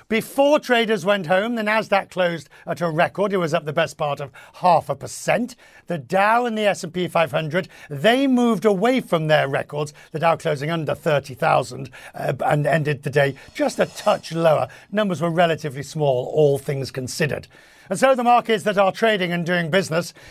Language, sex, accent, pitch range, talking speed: English, male, British, 145-195 Hz, 185 wpm